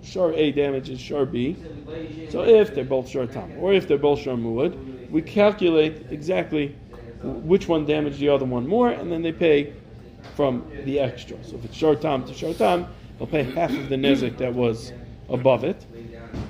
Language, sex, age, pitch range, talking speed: English, male, 40-59, 120-150 Hz, 170 wpm